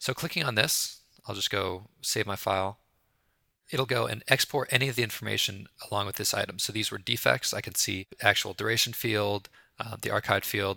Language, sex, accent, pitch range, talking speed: English, male, American, 100-125 Hz, 200 wpm